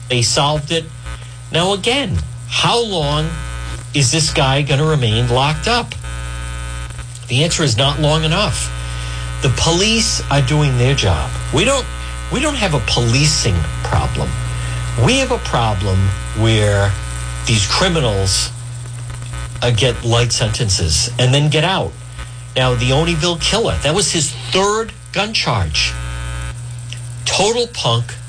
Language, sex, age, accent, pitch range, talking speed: English, male, 50-69, American, 105-145 Hz, 130 wpm